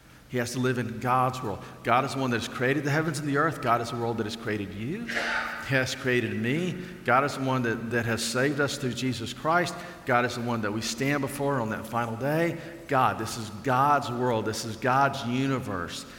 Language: English